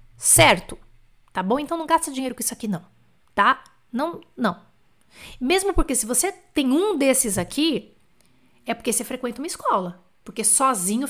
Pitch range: 230-305 Hz